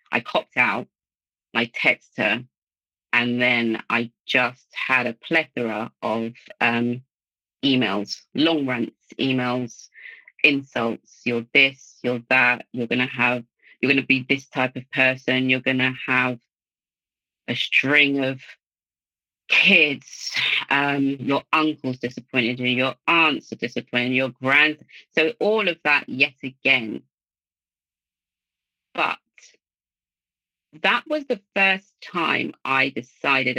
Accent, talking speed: British, 120 wpm